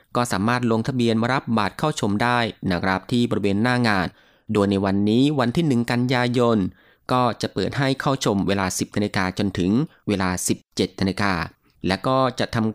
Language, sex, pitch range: Thai, male, 95-125 Hz